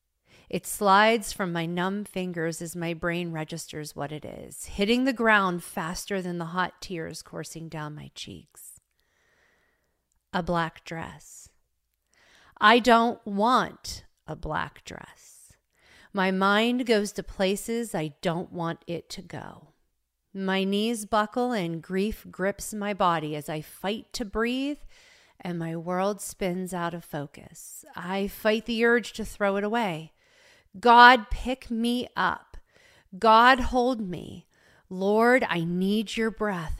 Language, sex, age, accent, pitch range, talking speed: English, female, 30-49, American, 170-220 Hz, 140 wpm